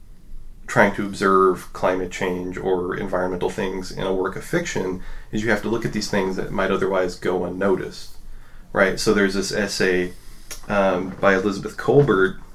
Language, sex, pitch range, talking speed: English, male, 95-110 Hz, 165 wpm